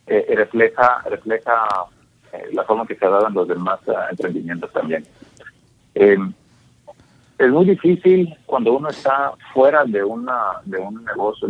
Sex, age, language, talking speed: male, 50-69, English, 155 wpm